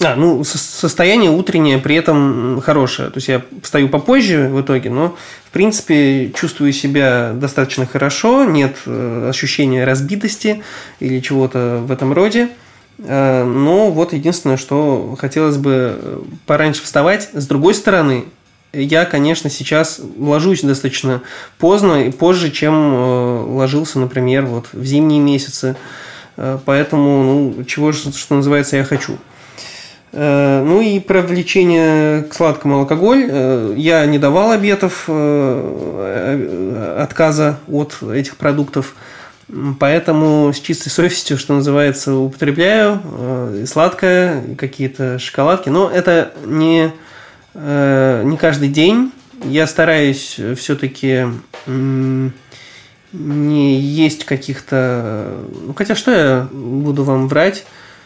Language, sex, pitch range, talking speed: Russian, male, 135-160 Hz, 110 wpm